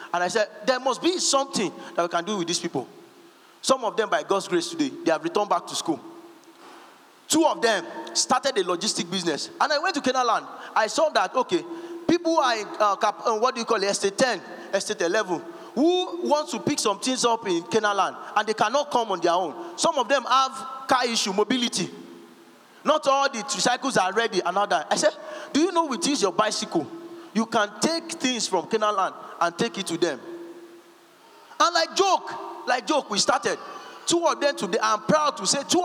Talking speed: 215 wpm